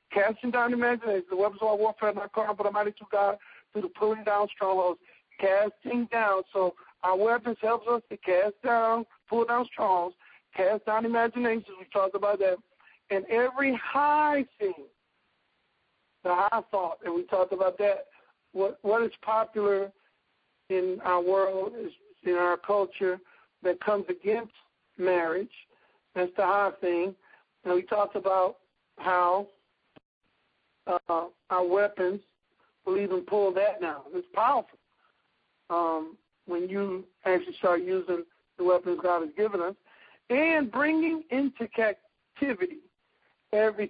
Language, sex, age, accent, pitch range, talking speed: English, male, 60-79, American, 185-230 Hz, 140 wpm